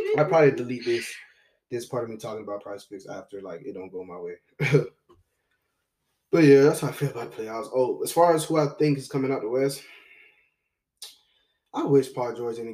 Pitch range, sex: 125-170 Hz, male